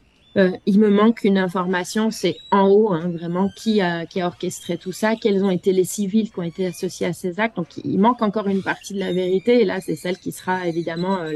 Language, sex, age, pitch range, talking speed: French, female, 30-49, 170-200 Hz, 250 wpm